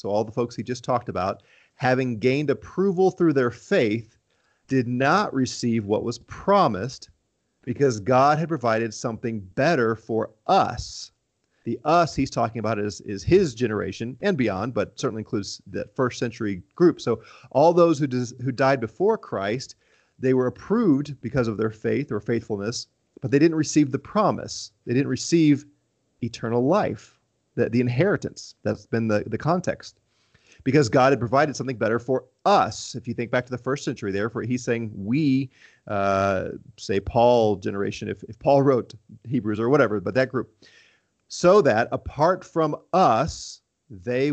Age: 30-49